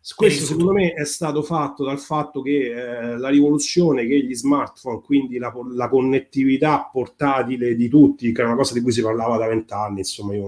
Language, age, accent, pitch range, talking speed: Italian, 30-49, native, 115-145 Hz, 195 wpm